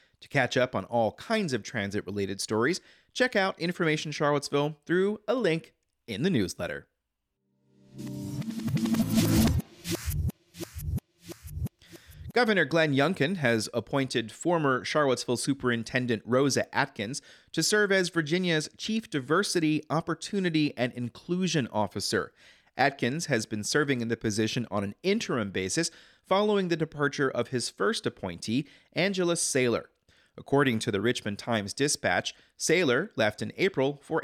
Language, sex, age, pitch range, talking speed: English, male, 30-49, 115-155 Hz, 120 wpm